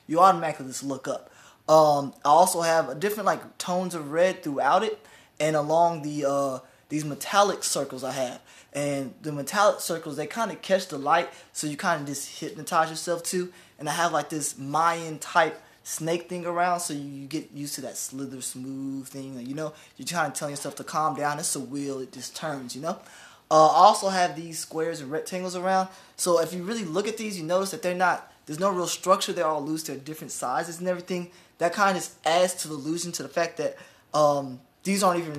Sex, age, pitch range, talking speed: male, 20-39, 145-180 Hz, 220 wpm